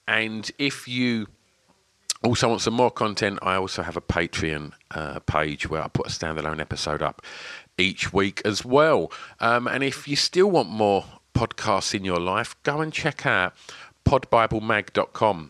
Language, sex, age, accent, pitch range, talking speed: English, male, 40-59, British, 85-115 Hz, 165 wpm